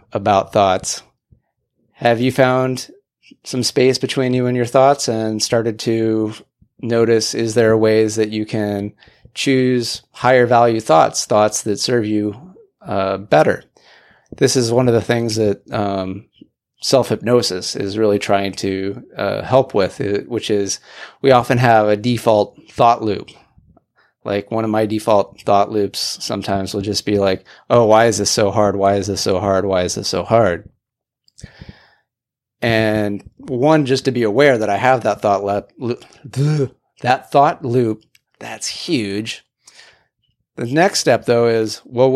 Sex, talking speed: male, 155 wpm